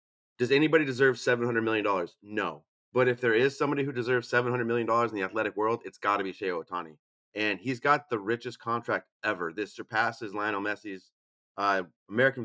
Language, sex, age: English, male, 30-49